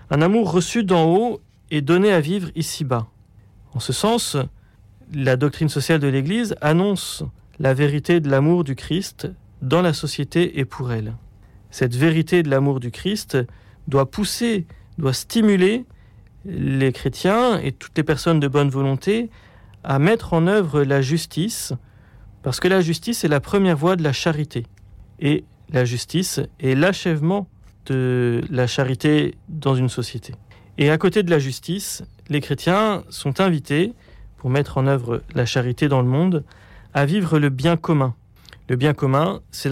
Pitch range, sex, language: 130-175 Hz, male, French